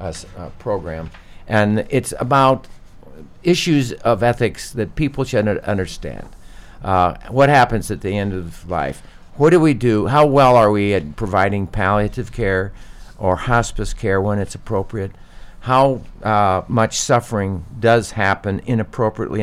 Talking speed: 140 wpm